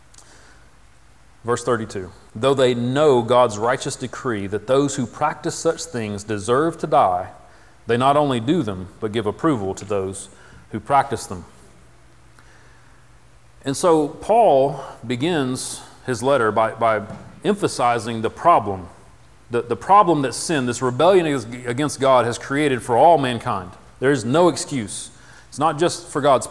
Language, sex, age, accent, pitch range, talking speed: English, male, 40-59, American, 115-150 Hz, 145 wpm